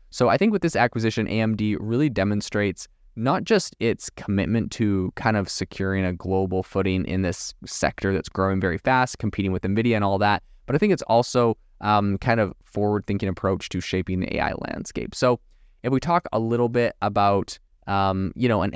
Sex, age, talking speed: male, 20-39, 190 wpm